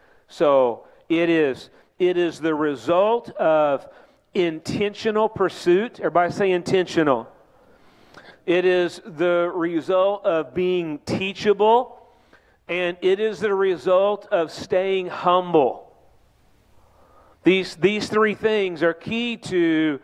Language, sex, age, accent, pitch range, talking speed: English, male, 40-59, American, 165-200 Hz, 105 wpm